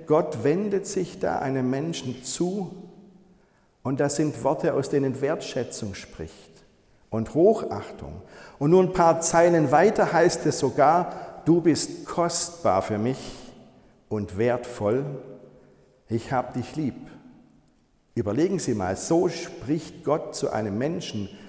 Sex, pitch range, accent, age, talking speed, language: male, 125-165 Hz, German, 50-69, 130 wpm, German